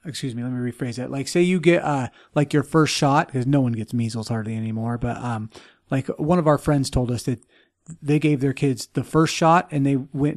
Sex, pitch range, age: male, 125-160 Hz, 30-49